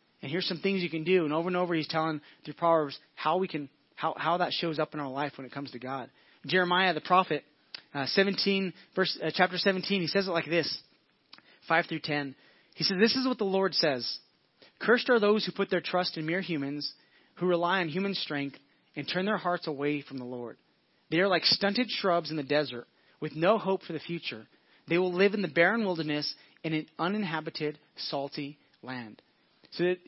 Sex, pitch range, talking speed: male, 150-185 Hz, 215 wpm